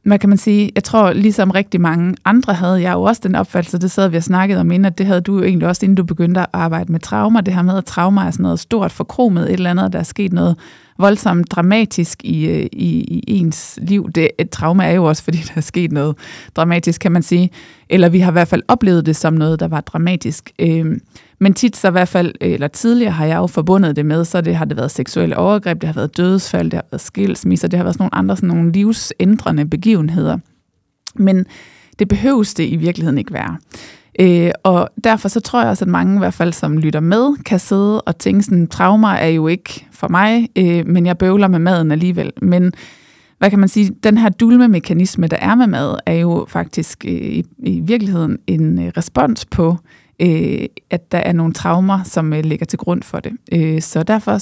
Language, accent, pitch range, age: Danish, native, 165-200 Hz, 20-39